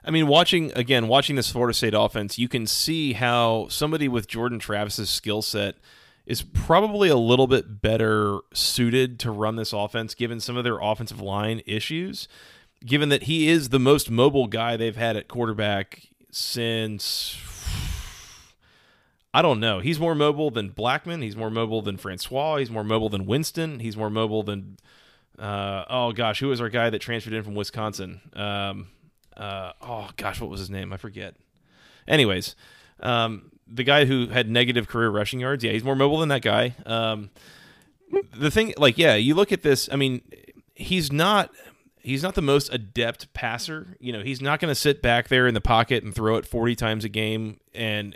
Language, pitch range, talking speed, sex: English, 110-135 Hz, 185 wpm, male